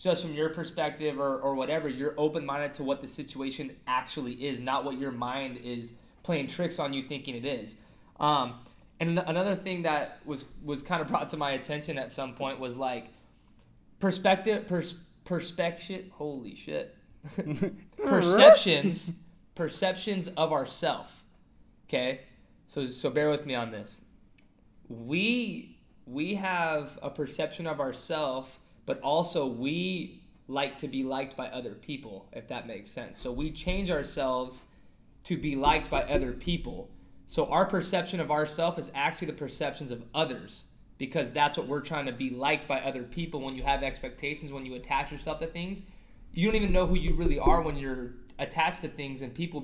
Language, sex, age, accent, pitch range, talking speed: English, male, 20-39, American, 135-170 Hz, 170 wpm